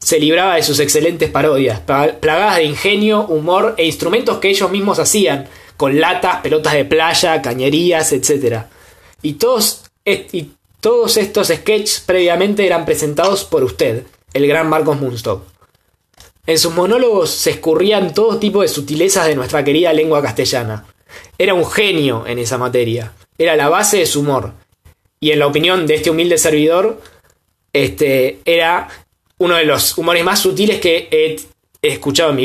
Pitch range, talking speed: 145-205 Hz, 160 wpm